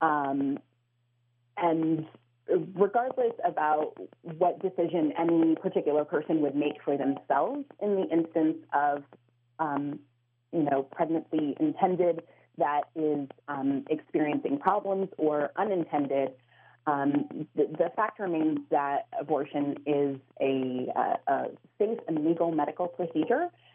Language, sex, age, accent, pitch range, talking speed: English, female, 30-49, American, 145-175 Hz, 115 wpm